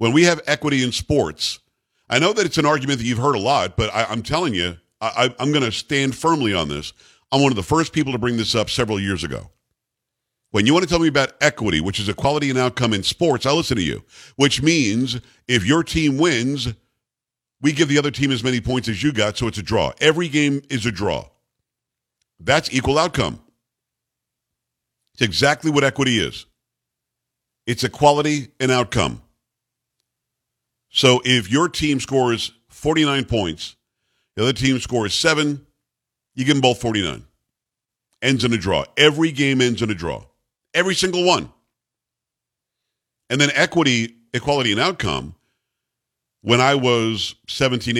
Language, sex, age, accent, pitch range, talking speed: English, male, 50-69, American, 115-140 Hz, 175 wpm